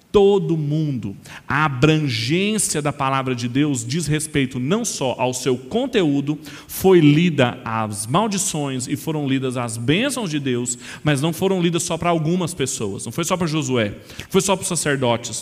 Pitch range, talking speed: 135-185 Hz, 175 wpm